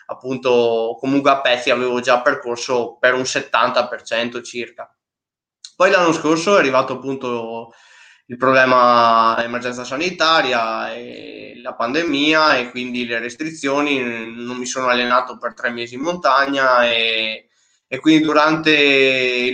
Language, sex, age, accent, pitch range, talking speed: Italian, male, 20-39, native, 120-145 Hz, 130 wpm